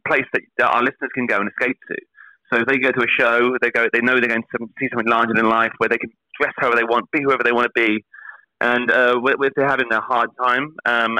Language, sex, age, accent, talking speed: English, male, 30-49, British, 270 wpm